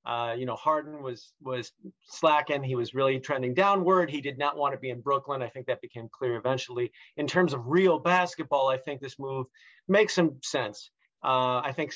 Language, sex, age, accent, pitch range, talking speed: English, male, 40-59, American, 130-170 Hz, 210 wpm